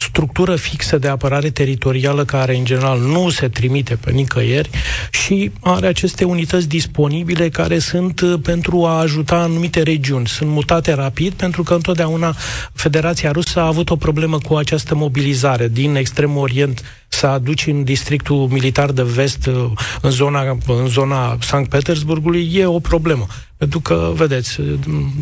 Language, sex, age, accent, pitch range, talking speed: Romanian, male, 30-49, native, 135-170 Hz, 150 wpm